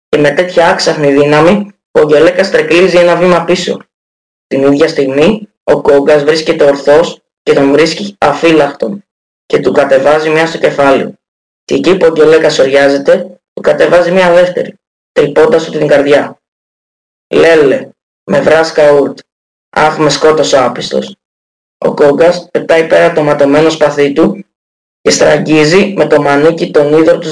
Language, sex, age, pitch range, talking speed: Greek, female, 20-39, 140-175 Hz, 140 wpm